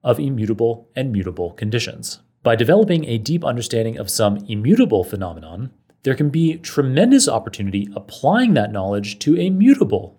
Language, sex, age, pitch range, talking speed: English, male, 30-49, 105-155 Hz, 145 wpm